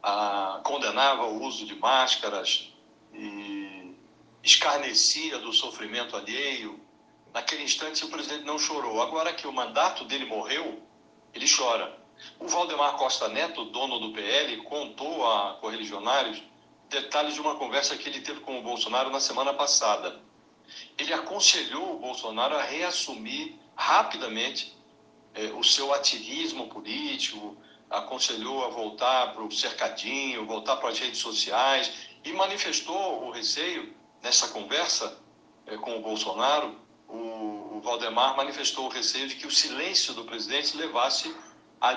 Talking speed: 135 wpm